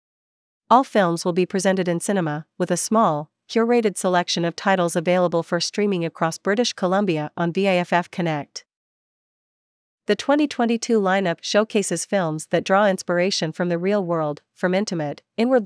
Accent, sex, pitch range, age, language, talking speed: American, female, 170-200 Hz, 40-59, English, 145 wpm